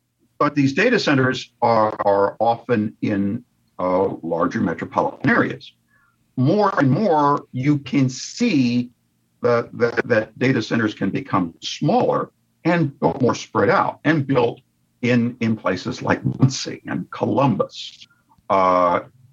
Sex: male